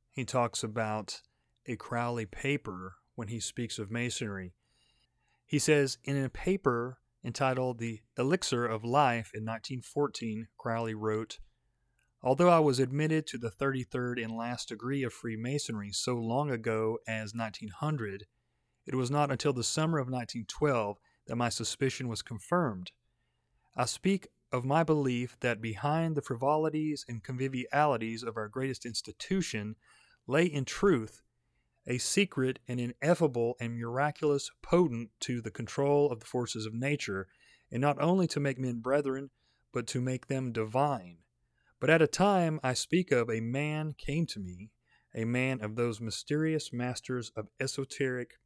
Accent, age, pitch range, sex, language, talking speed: American, 30-49, 115-145 Hz, male, English, 150 wpm